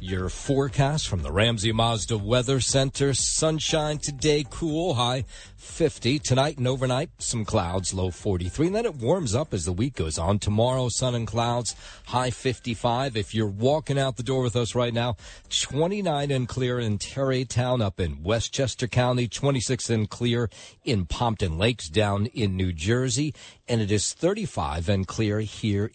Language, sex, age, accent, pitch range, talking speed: English, male, 50-69, American, 105-135 Hz, 170 wpm